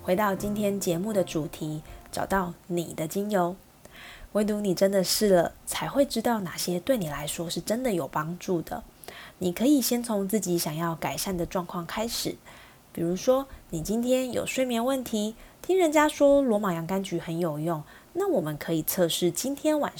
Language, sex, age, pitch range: Chinese, female, 20-39, 170-215 Hz